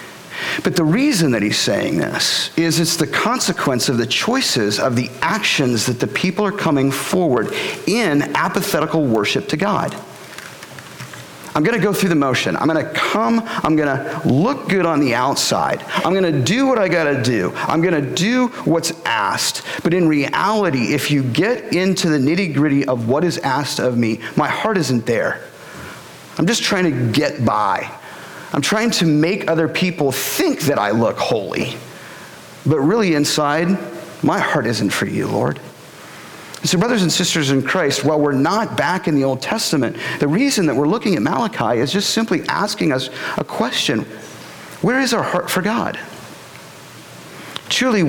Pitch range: 140-190 Hz